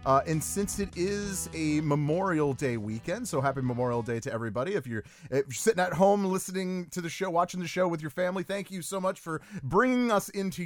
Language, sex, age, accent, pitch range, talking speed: English, male, 30-49, American, 115-180 Hz, 220 wpm